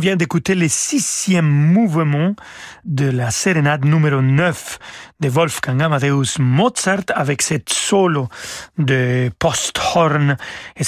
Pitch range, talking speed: 140-180 Hz, 110 wpm